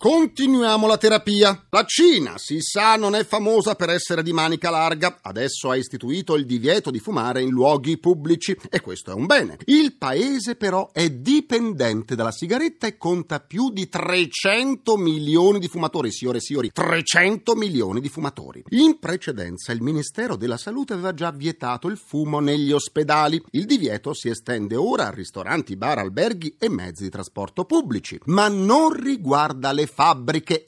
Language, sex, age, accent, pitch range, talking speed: Italian, male, 40-59, native, 150-230 Hz, 165 wpm